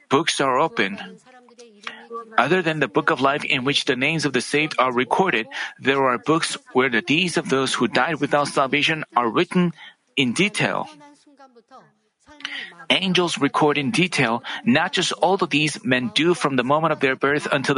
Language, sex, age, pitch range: Korean, male, 40-59, 140-195 Hz